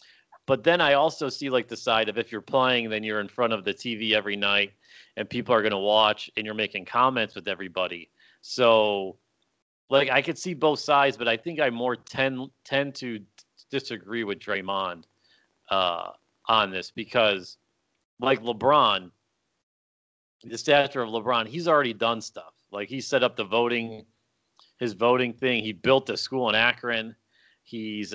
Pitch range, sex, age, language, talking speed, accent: 110-140 Hz, male, 40-59, English, 175 wpm, American